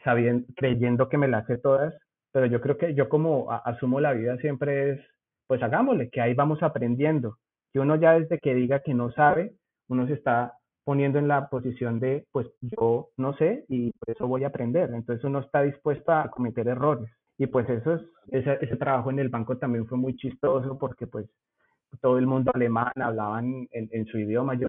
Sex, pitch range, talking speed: male, 120-150 Hz, 205 wpm